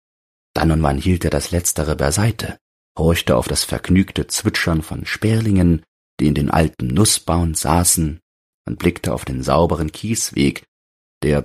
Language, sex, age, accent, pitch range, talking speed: German, male, 40-59, German, 75-100 Hz, 145 wpm